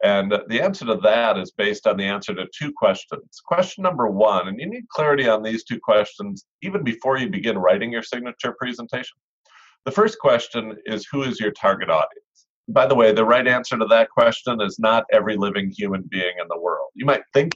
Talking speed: 210 wpm